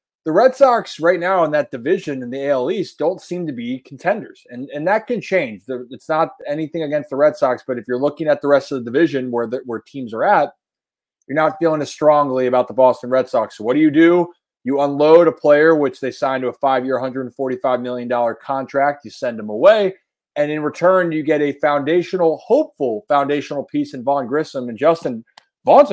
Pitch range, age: 130-160 Hz, 20-39